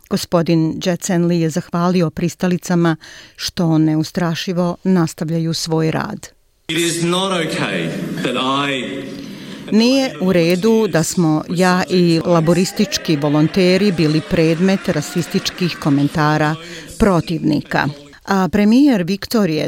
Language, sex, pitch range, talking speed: Croatian, female, 155-185 Hz, 85 wpm